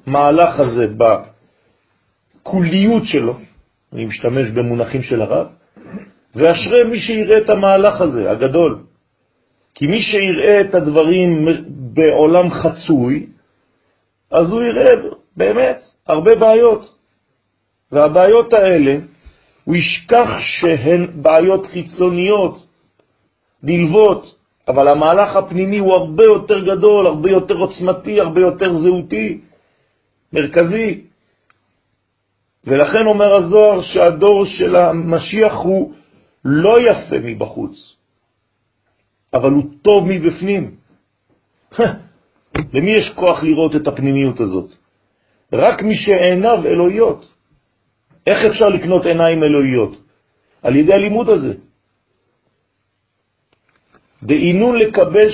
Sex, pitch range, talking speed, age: male, 140-205 Hz, 95 wpm, 40-59